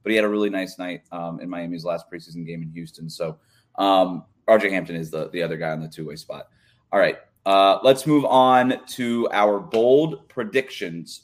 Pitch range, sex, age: 95-130 Hz, male, 30-49